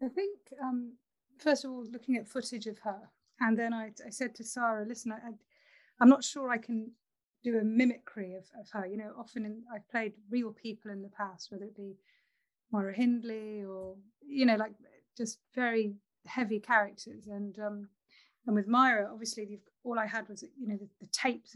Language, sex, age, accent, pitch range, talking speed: English, female, 30-49, British, 210-250 Hz, 200 wpm